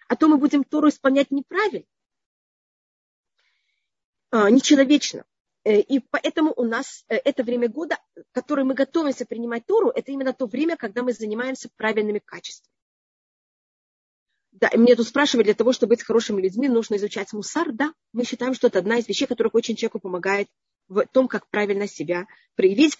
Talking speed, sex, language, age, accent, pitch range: 160 wpm, female, Russian, 30-49, native, 225-275 Hz